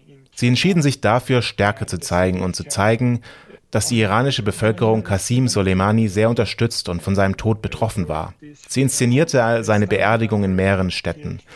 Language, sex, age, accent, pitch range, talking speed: German, male, 30-49, German, 100-120 Hz, 160 wpm